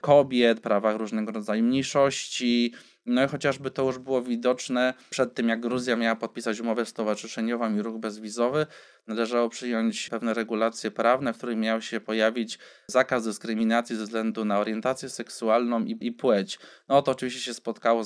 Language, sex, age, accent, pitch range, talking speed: Polish, male, 20-39, native, 115-130 Hz, 160 wpm